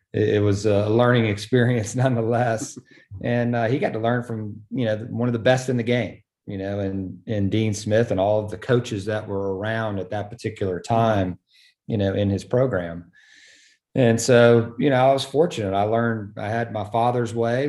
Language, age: English, 40-59